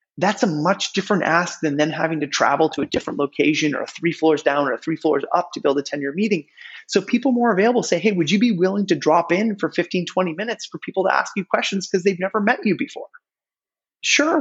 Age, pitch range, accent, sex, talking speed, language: 30-49, 135-190 Hz, American, male, 235 wpm, English